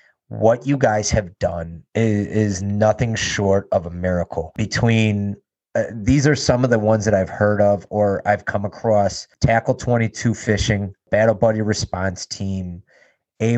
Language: English